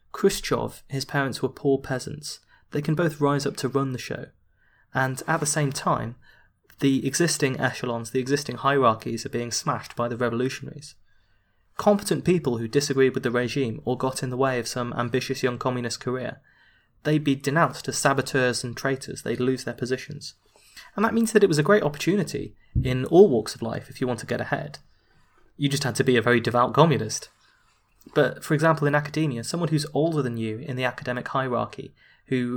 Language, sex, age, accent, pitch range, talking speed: English, male, 20-39, British, 125-150 Hz, 195 wpm